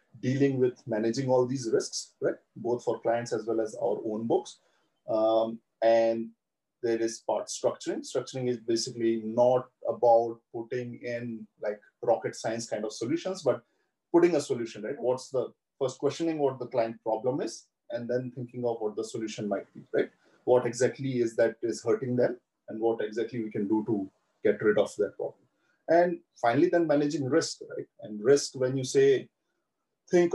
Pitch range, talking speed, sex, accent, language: 115-145 Hz, 180 wpm, male, Indian, English